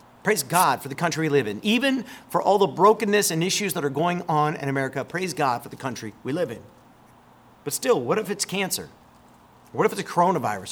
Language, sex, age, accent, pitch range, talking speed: English, male, 40-59, American, 165-235 Hz, 225 wpm